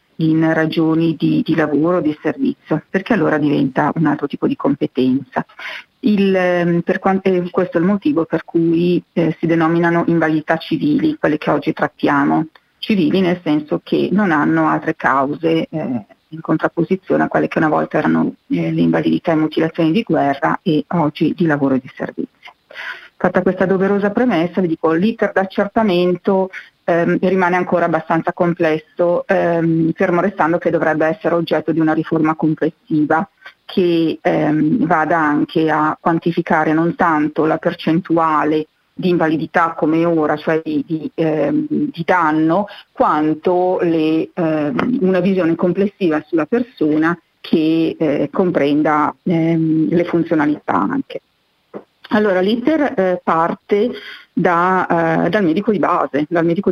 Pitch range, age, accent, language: 155-185 Hz, 40-59, native, Italian